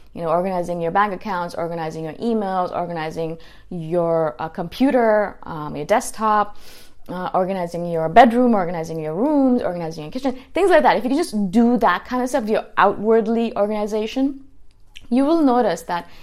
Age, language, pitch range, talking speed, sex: 20-39, English, 170-220 Hz, 165 wpm, female